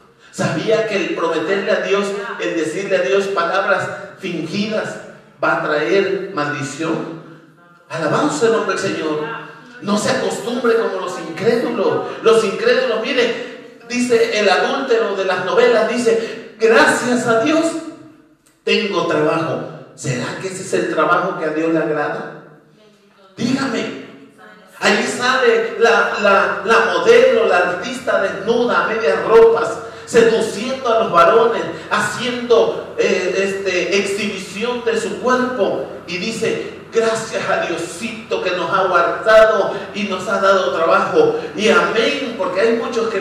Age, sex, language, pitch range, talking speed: 50-69, male, Spanish, 180-240 Hz, 135 wpm